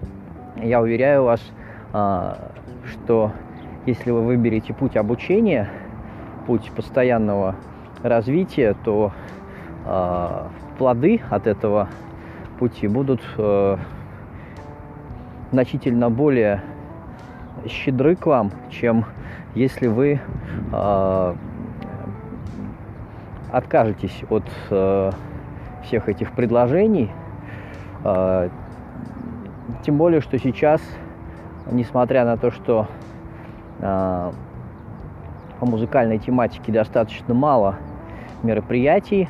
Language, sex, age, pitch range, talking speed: Russian, male, 20-39, 95-125 Hz, 70 wpm